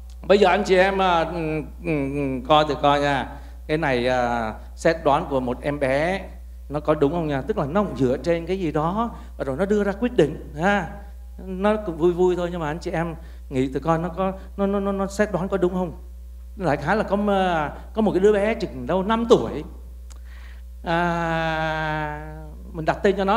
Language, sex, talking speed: Vietnamese, male, 220 wpm